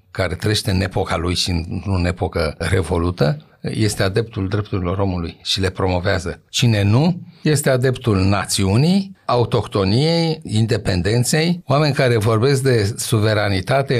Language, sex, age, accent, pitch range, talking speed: Romanian, male, 60-79, native, 105-160 Hz, 125 wpm